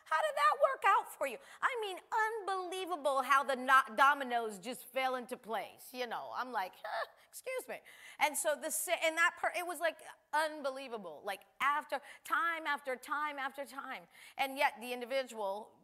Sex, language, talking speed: female, English, 175 wpm